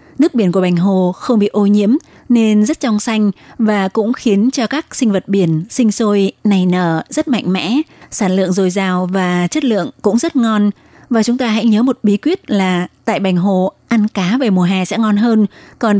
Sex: female